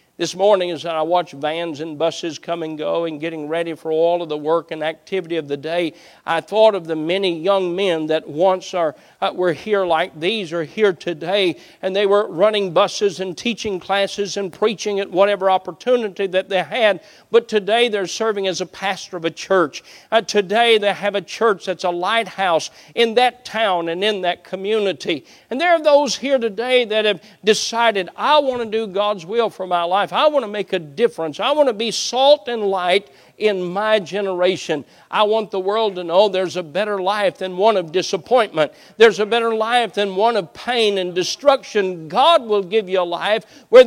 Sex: male